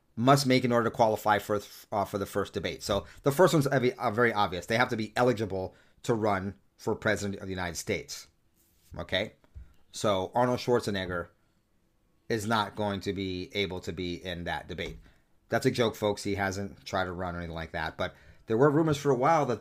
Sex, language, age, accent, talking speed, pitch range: male, English, 30-49, American, 205 wpm, 95-120 Hz